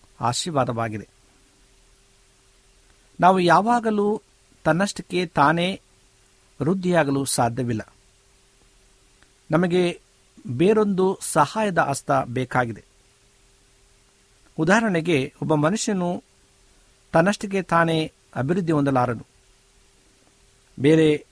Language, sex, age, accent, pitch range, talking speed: Kannada, male, 60-79, native, 125-175 Hz, 55 wpm